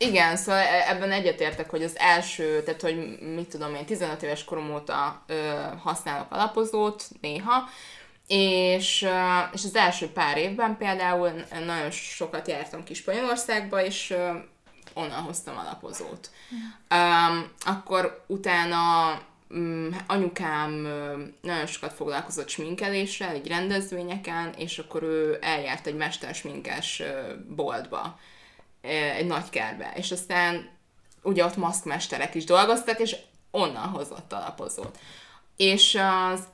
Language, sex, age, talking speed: Hungarian, female, 20-39, 105 wpm